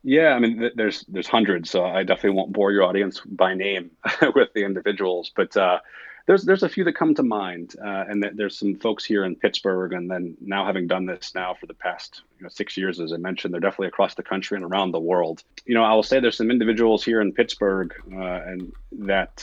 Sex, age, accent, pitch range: male, 30-49, American, 95-105 Hz